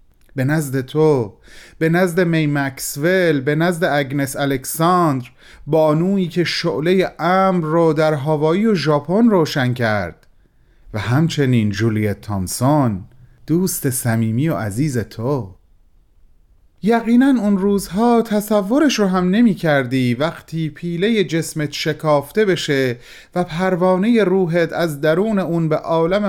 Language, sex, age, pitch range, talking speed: Persian, male, 30-49, 125-170 Hz, 120 wpm